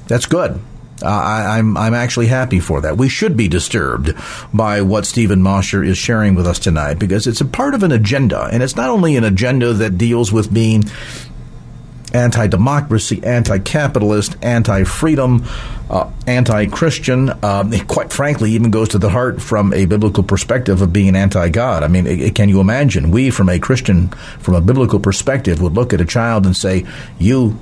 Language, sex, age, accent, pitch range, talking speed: English, male, 50-69, American, 95-120 Hz, 185 wpm